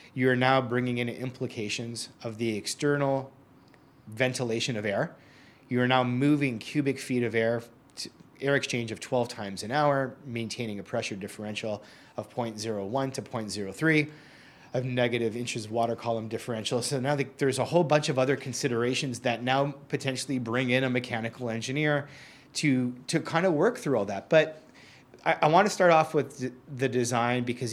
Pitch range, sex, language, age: 115-140 Hz, male, English, 30-49